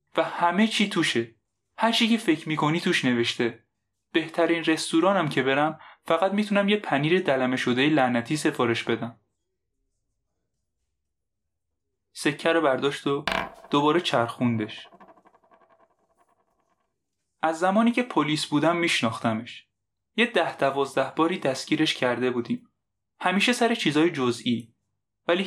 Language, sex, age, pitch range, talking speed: Persian, male, 10-29, 120-180 Hz, 115 wpm